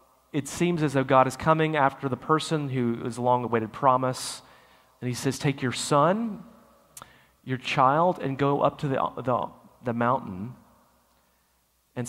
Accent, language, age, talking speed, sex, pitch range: American, English, 30-49, 155 wpm, male, 110-140 Hz